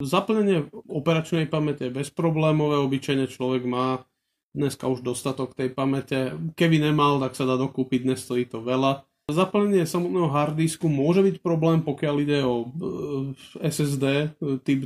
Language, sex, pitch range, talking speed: Slovak, male, 125-145 Hz, 140 wpm